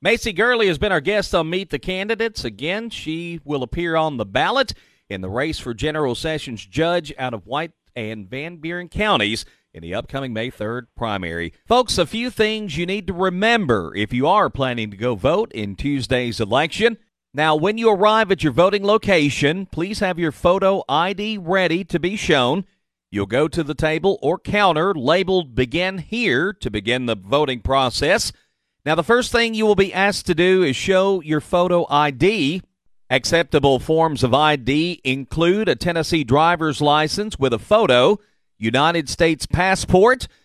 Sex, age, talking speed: male, 40-59, 175 wpm